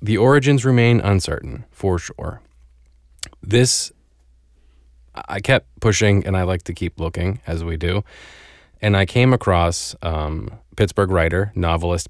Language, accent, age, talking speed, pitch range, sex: English, American, 20-39, 135 wpm, 85-105 Hz, male